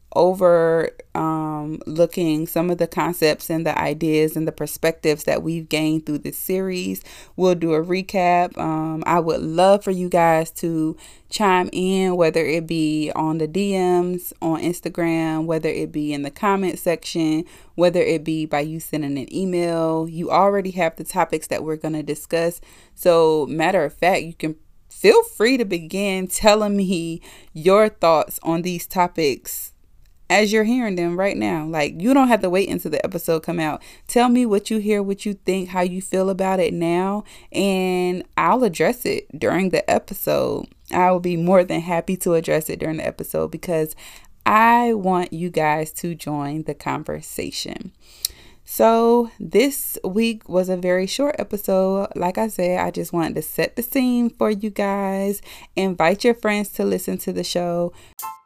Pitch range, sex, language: 160-195 Hz, female, English